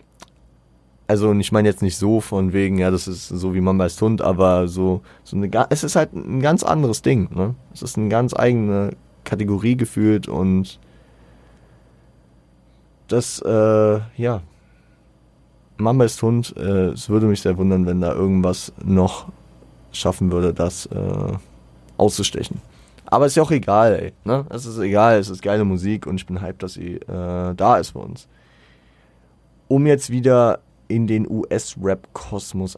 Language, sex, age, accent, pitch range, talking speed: German, male, 20-39, German, 90-105 Hz, 165 wpm